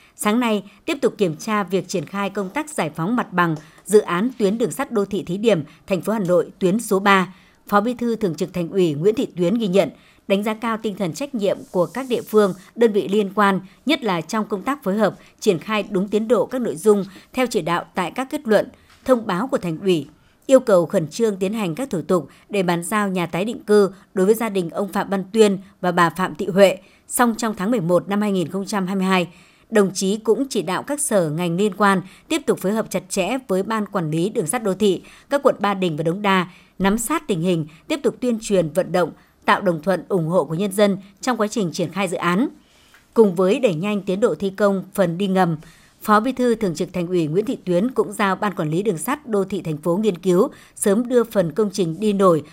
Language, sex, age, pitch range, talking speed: Vietnamese, male, 60-79, 185-220 Hz, 250 wpm